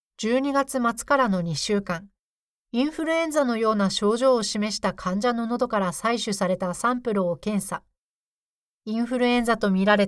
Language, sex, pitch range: Japanese, female, 200-255 Hz